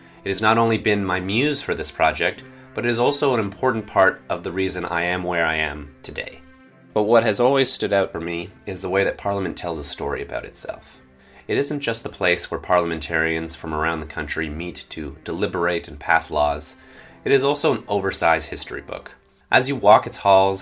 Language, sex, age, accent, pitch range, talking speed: English, male, 30-49, American, 80-105 Hz, 210 wpm